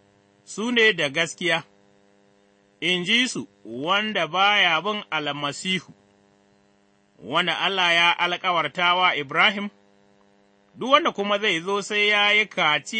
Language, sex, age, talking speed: English, male, 30-49, 85 wpm